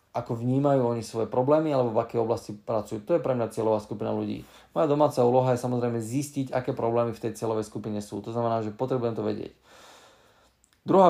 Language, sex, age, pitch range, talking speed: Slovak, male, 20-39, 110-135 Hz, 200 wpm